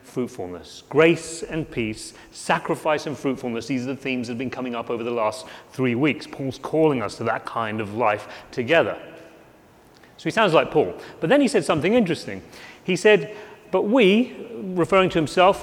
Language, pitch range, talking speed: English, 130-175 Hz, 185 wpm